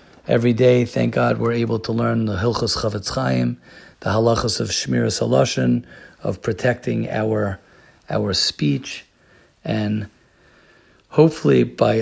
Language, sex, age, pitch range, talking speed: English, male, 40-59, 100-125 Hz, 125 wpm